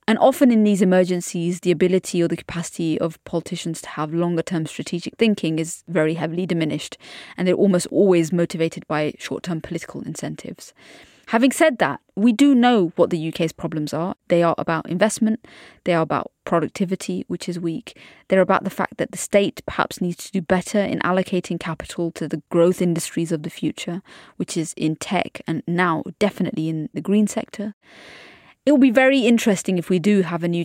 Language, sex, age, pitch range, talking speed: English, female, 20-39, 165-205 Hz, 190 wpm